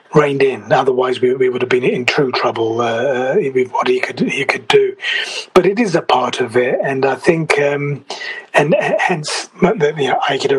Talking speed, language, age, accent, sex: 200 wpm, English, 30-49, British, male